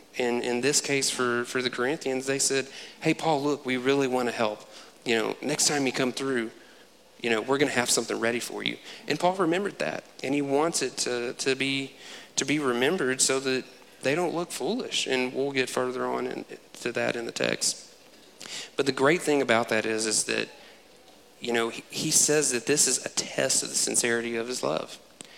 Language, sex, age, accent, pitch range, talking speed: English, male, 40-59, American, 115-135 Hz, 210 wpm